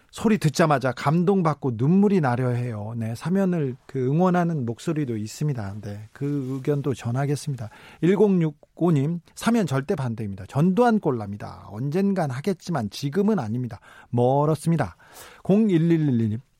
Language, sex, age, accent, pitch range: Korean, male, 40-59, native, 125-175 Hz